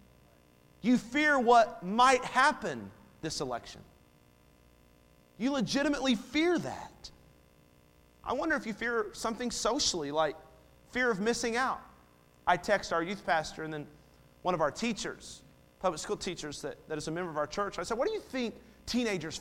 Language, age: English, 40-59